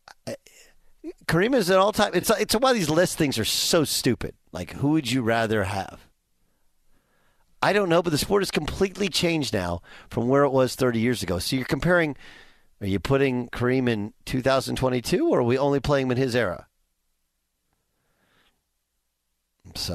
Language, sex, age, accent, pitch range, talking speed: English, male, 50-69, American, 95-140 Hz, 165 wpm